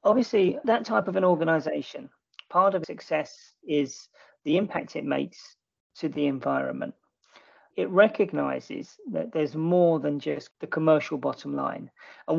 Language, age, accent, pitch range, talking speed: English, 40-59, British, 155-210 Hz, 140 wpm